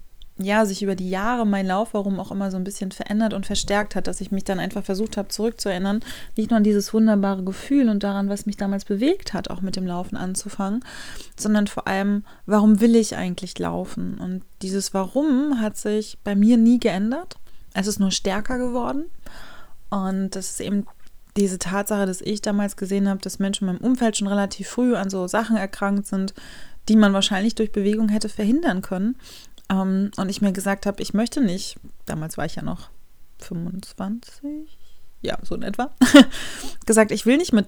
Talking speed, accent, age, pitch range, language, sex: 190 wpm, German, 30-49, 195-220 Hz, German, female